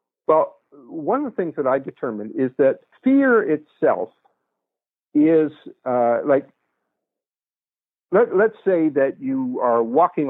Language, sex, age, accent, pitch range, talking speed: English, male, 60-79, American, 120-155 Hz, 130 wpm